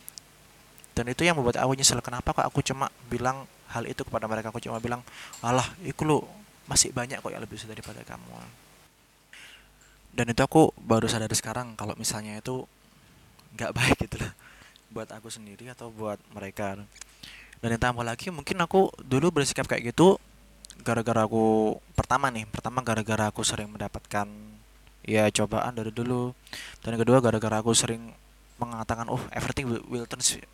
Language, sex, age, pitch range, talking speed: Indonesian, male, 20-39, 115-135 Hz, 155 wpm